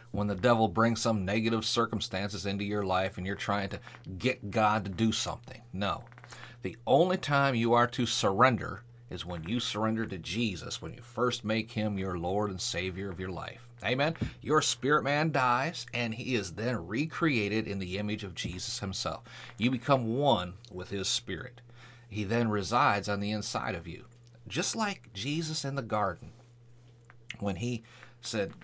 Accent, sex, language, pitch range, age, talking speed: American, male, English, 100-125 Hz, 40-59, 175 wpm